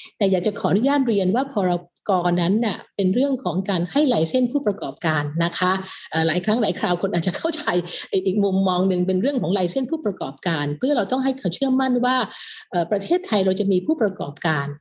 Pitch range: 175-245 Hz